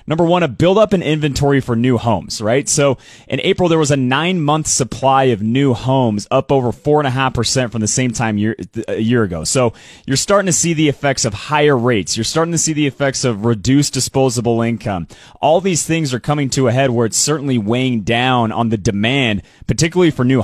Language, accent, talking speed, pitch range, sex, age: English, American, 225 wpm, 115-145 Hz, male, 30-49